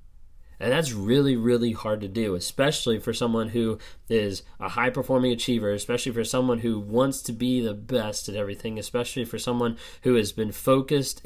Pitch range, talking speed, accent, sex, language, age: 110-130 Hz, 180 wpm, American, male, English, 20-39